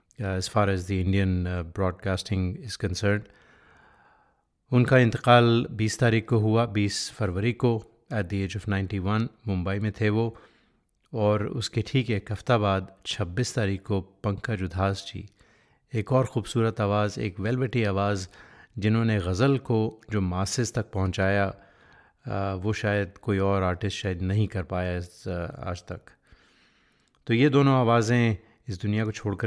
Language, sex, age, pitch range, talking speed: Hindi, male, 30-49, 95-110 Hz, 145 wpm